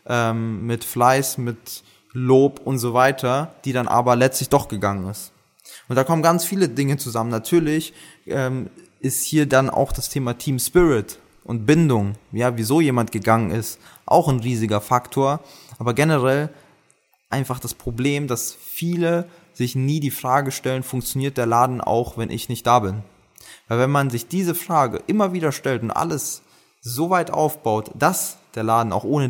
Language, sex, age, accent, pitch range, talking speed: German, male, 20-39, German, 115-150 Hz, 170 wpm